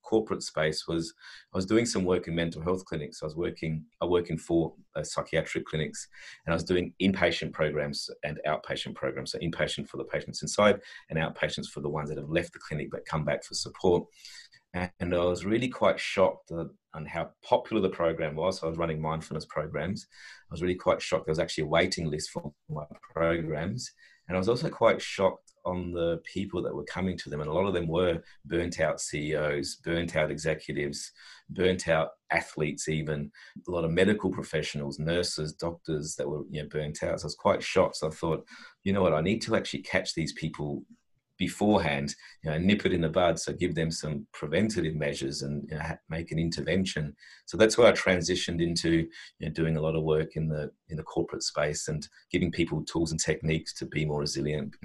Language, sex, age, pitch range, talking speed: English, male, 30-49, 75-90 Hz, 205 wpm